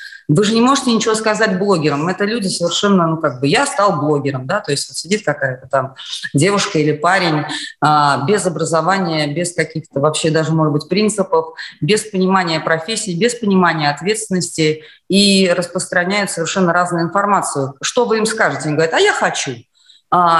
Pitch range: 165-210 Hz